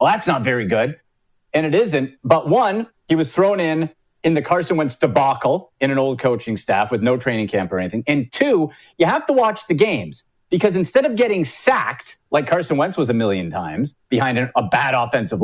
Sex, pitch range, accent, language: male, 125-175 Hz, American, English